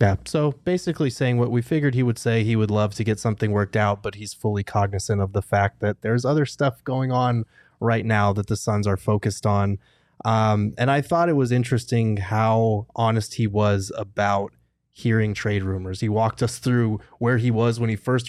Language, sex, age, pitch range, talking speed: English, male, 20-39, 105-120 Hz, 210 wpm